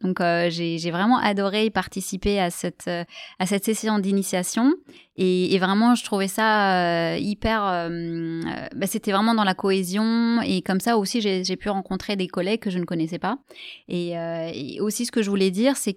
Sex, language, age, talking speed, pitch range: female, French, 20-39, 200 wpm, 180-220 Hz